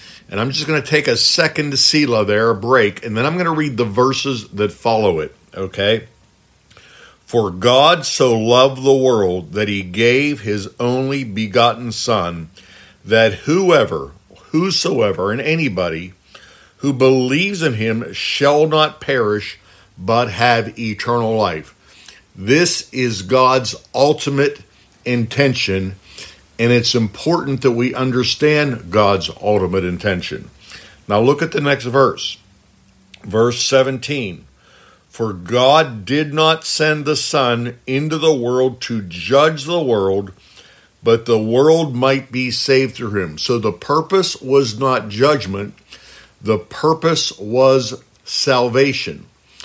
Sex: male